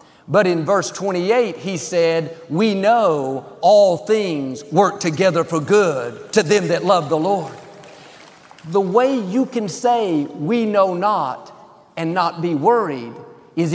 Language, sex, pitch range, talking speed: English, male, 160-205 Hz, 145 wpm